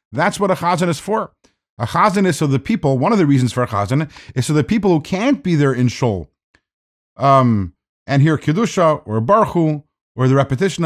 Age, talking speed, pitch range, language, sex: 50-69, 210 wpm, 130-180 Hz, English, male